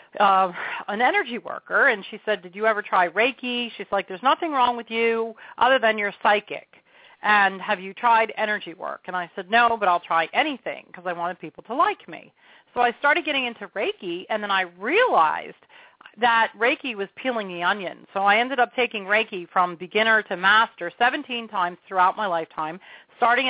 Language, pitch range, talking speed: English, 190-235 Hz, 195 wpm